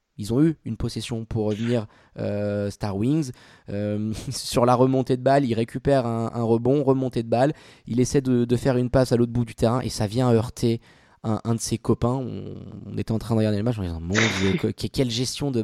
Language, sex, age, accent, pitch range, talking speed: French, male, 20-39, French, 110-135 Hz, 235 wpm